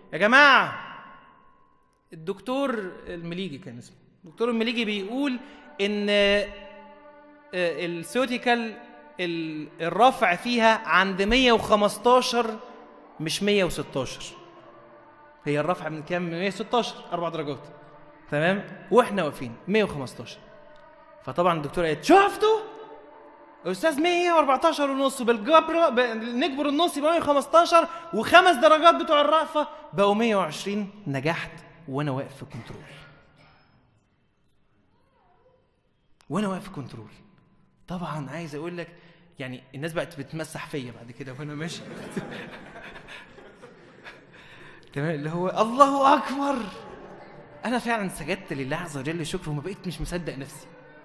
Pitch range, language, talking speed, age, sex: 155-250 Hz, English, 100 wpm, 20-39, male